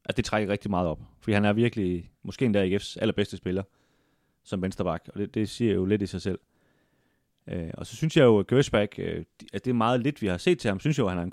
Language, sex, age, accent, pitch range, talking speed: Danish, male, 30-49, native, 95-120 Hz, 280 wpm